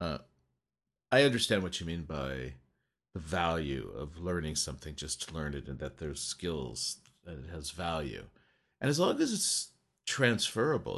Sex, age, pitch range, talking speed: male, 50-69, 75-95 Hz, 165 wpm